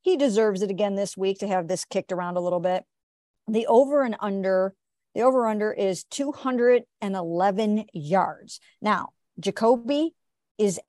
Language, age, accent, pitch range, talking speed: English, 50-69, American, 180-225 Hz, 155 wpm